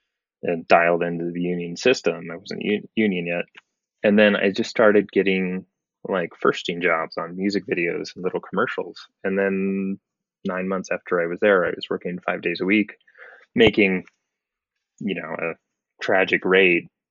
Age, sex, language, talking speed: 20-39, male, English, 160 wpm